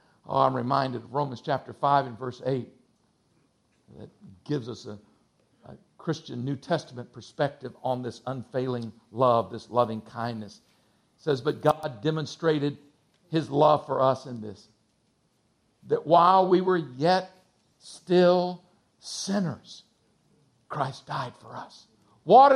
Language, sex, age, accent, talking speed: English, male, 50-69, American, 130 wpm